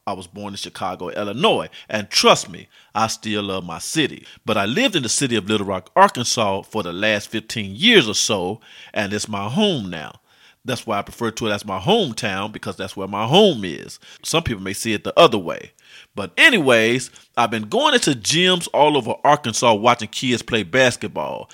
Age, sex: 40-59, male